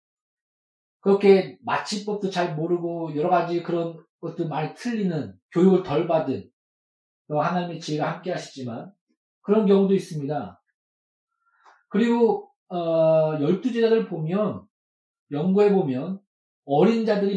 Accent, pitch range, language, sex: native, 145-200 Hz, Korean, male